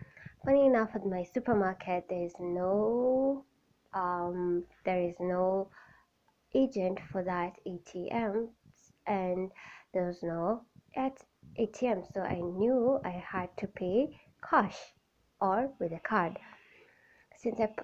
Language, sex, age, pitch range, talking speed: English, female, 20-39, 180-225 Hz, 120 wpm